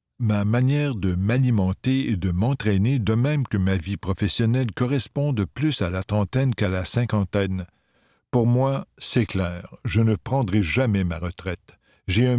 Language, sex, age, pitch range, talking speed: French, male, 60-79, 95-125 Hz, 165 wpm